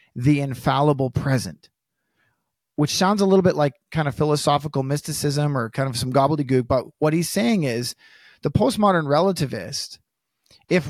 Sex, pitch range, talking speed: male, 140-175 Hz, 150 wpm